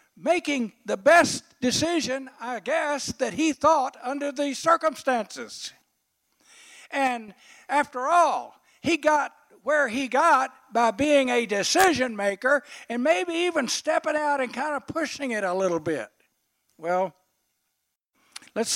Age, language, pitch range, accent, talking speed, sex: 60-79, English, 205-295 Hz, American, 130 wpm, male